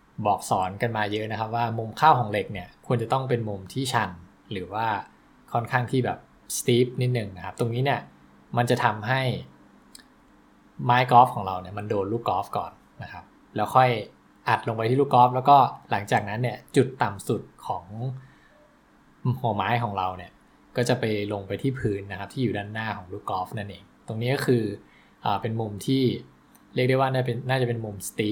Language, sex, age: English, male, 20-39